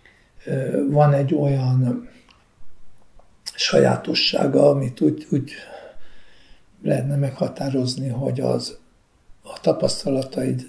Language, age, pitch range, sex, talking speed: Hungarian, 60-79, 125-165 Hz, male, 75 wpm